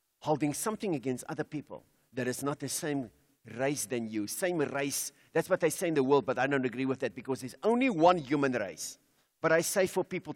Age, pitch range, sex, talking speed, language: 50-69, 130-215 Hz, male, 225 wpm, English